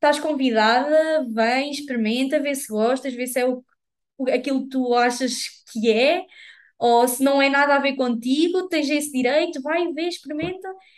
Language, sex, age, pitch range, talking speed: Portuguese, female, 20-39, 225-295 Hz, 165 wpm